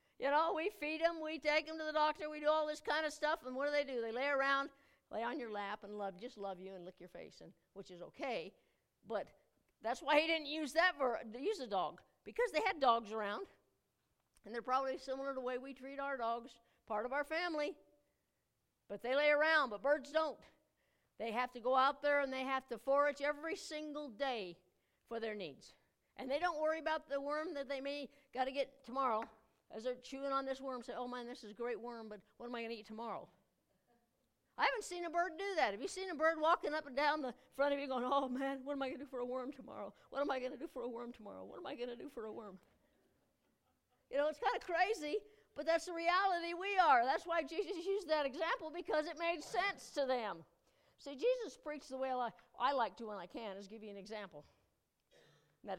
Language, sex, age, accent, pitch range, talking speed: English, female, 60-79, American, 235-310 Hz, 245 wpm